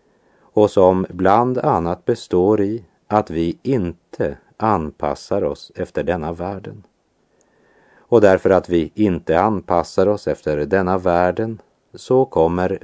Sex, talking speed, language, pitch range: male, 120 wpm, German, 80-105 Hz